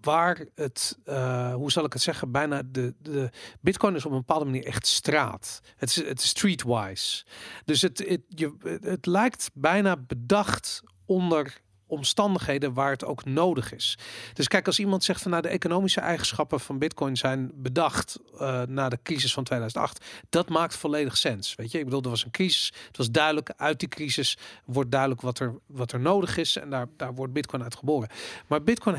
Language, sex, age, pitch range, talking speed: Dutch, male, 40-59, 130-170 Hz, 195 wpm